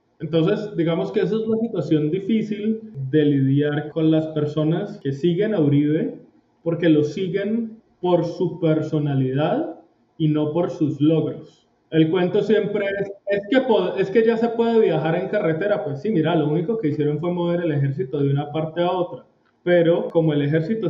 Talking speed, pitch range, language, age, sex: 180 wpm, 150-180 Hz, Spanish, 20-39, male